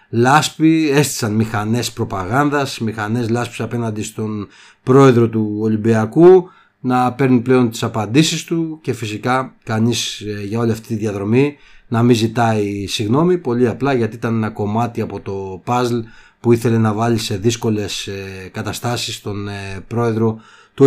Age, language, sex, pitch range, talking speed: 30-49, Greek, male, 110-130 Hz, 135 wpm